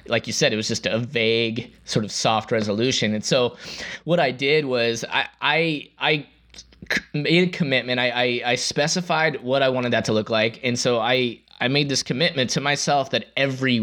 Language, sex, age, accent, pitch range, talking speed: English, male, 20-39, American, 115-145 Hz, 200 wpm